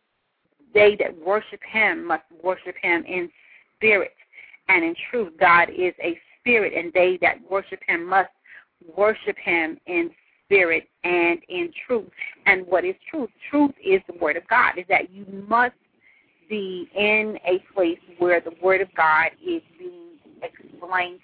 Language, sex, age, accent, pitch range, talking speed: English, female, 30-49, American, 180-230 Hz, 155 wpm